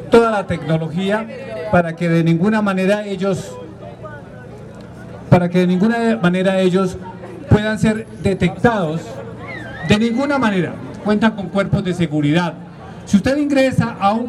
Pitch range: 175-215 Hz